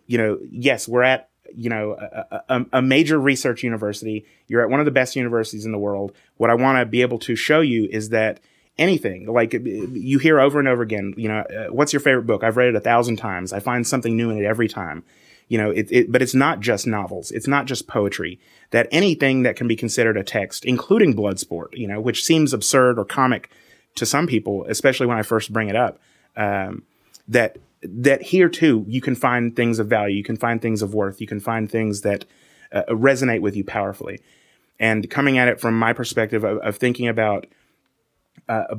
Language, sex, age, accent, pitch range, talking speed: English, male, 30-49, American, 110-130 Hz, 220 wpm